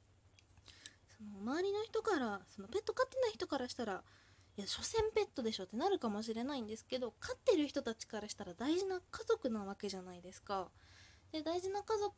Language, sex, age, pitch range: Japanese, female, 20-39, 195-320 Hz